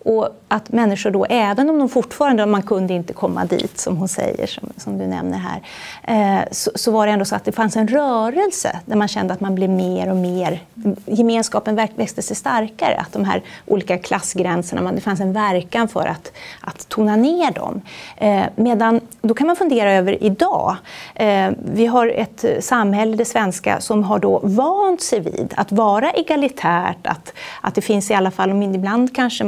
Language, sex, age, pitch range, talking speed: Swedish, female, 30-49, 185-230 Hz, 195 wpm